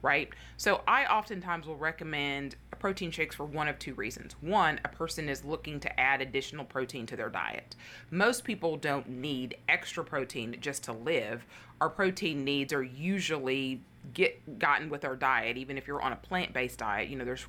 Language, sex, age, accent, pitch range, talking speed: English, female, 30-49, American, 135-165 Hz, 180 wpm